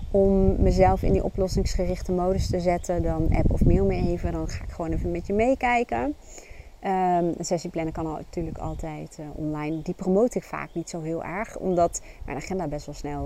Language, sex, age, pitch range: Dutch, female, 30-49, 135-200 Hz